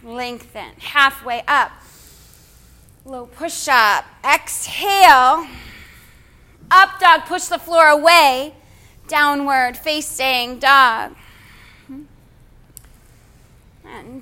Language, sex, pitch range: English, female, 255-325 Hz